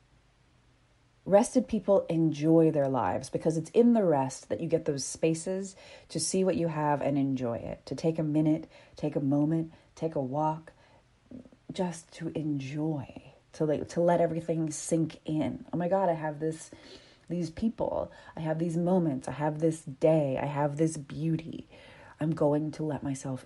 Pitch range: 130-165 Hz